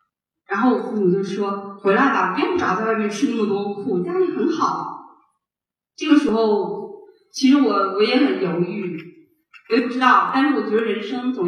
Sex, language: female, Chinese